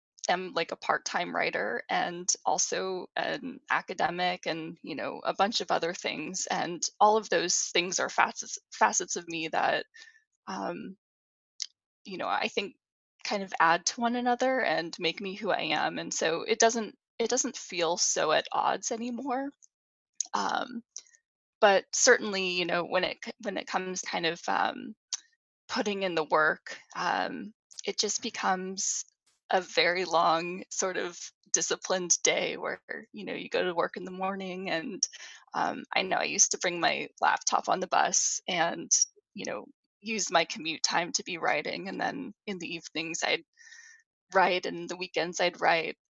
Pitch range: 175-260 Hz